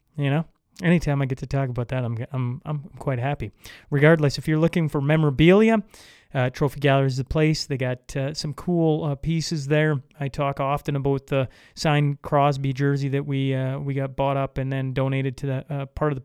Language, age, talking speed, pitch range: English, 30-49, 215 wpm, 135-150 Hz